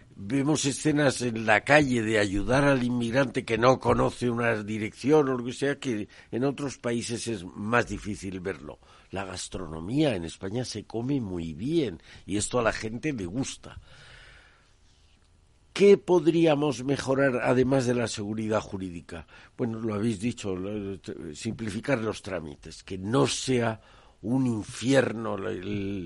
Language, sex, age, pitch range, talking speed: Spanish, male, 60-79, 105-135 Hz, 145 wpm